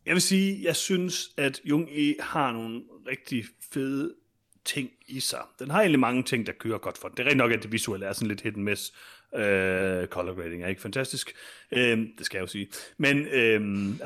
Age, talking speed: 30-49, 220 wpm